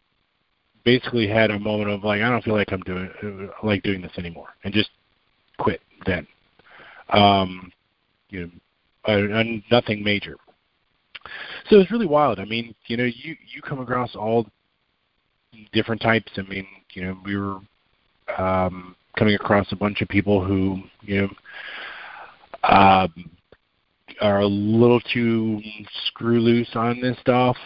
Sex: male